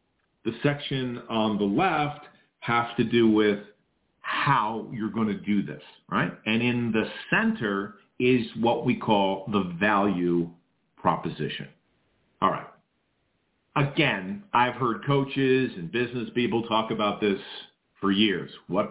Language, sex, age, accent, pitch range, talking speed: English, male, 50-69, American, 105-140 Hz, 135 wpm